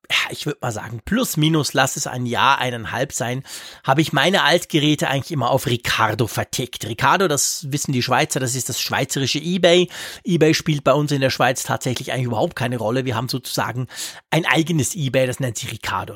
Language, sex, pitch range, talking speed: German, male, 125-170 Hz, 195 wpm